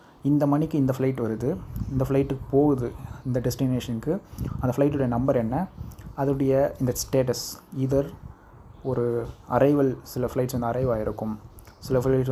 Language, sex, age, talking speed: Tamil, male, 20-39, 125 wpm